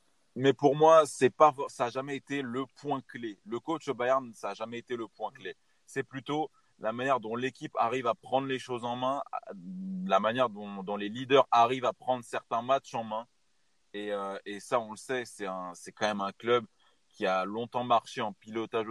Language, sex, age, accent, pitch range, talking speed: French, male, 20-39, French, 110-140 Hz, 215 wpm